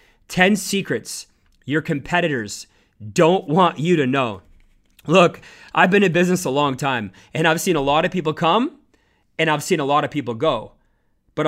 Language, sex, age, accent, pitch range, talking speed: English, male, 30-49, American, 135-185 Hz, 180 wpm